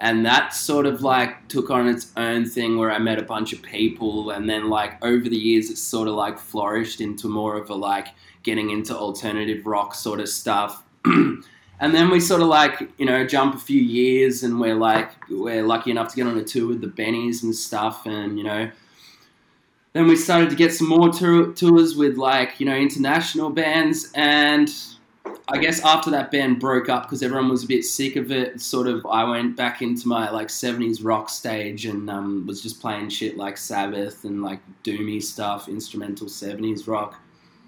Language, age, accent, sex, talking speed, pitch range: English, 20-39, Australian, male, 200 wpm, 105-130 Hz